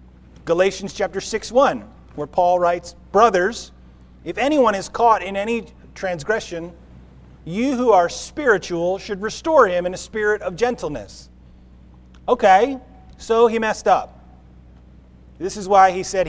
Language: English